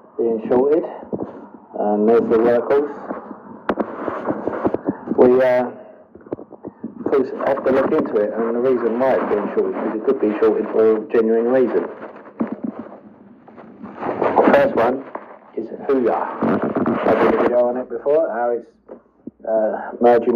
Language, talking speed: English, 135 wpm